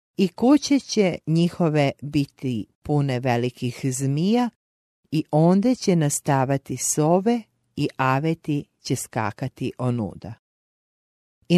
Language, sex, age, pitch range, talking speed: English, female, 40-59, 125-165 Hz, 100 wpm